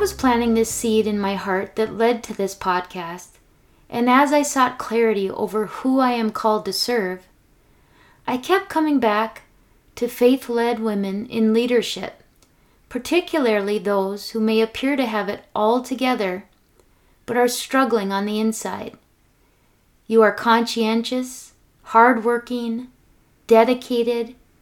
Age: 30-49